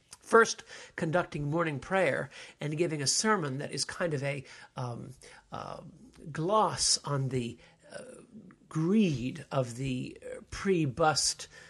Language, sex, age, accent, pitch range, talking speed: English, male, 60-79, American, 135-170 Hz, 120 wpm